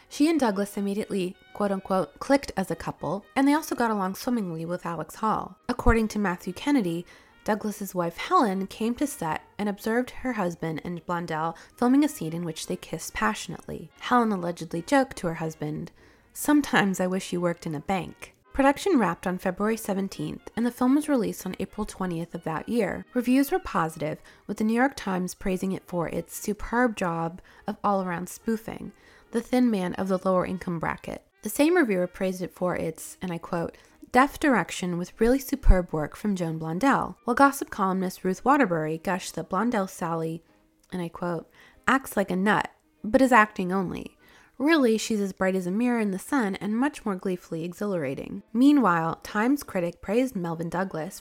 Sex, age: female, 20-39